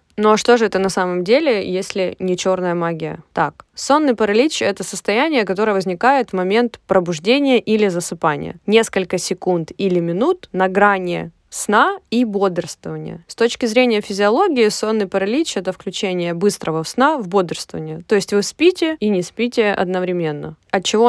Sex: female